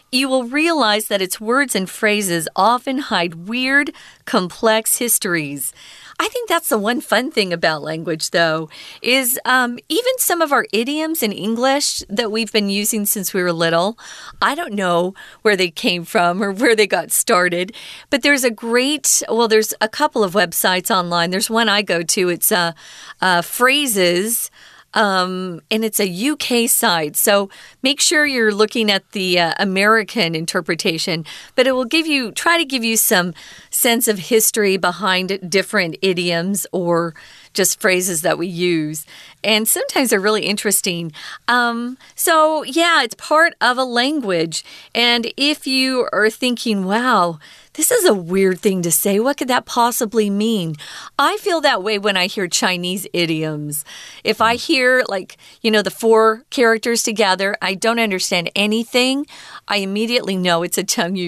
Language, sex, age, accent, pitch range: Chinese, female, 40-59, American, 185-250 Hz